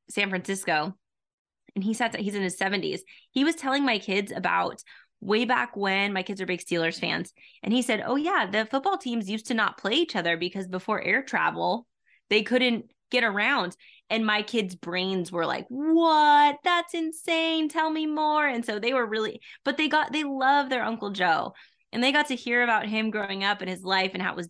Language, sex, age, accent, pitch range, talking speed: English, female, 20-39, American, 195-255 Hz, 215 wpm